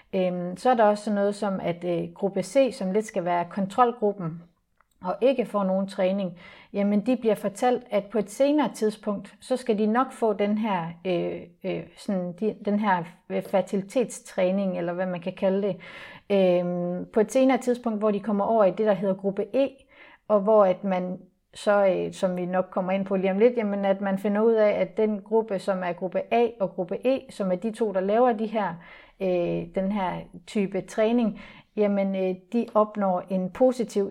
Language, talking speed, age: Danish, 190 wpm, 40-59